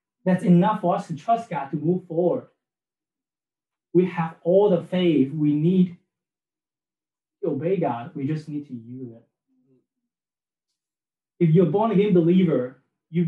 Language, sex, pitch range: English, male, 145-180 Hz